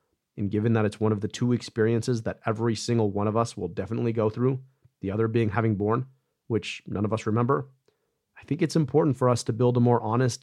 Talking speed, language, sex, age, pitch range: 230 wpm, English, male, 30-49, 105-130 Hz